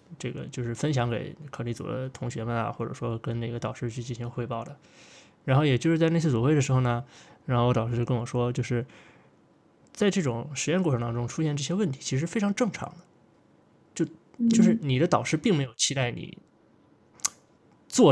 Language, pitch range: Chinese, 120-145 Hz